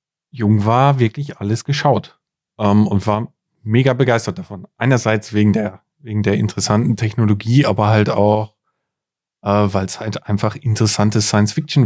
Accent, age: German, 30-49